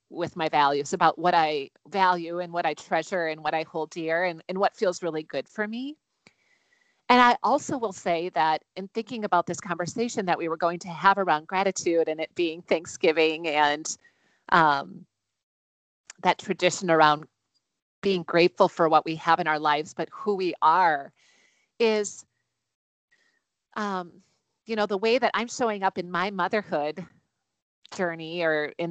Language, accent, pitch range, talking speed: English, American, 165-225 Hz, 170 wpm